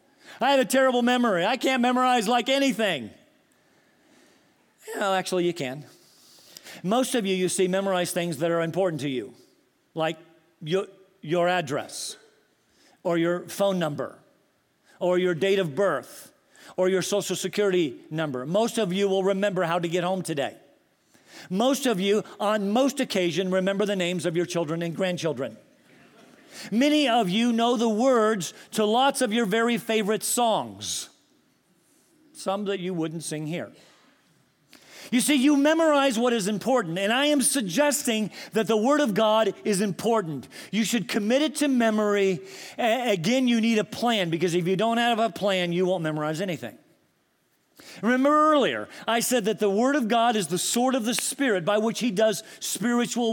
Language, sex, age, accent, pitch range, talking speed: English, male, 50-69, American, 185-255 Hz, 165 wpm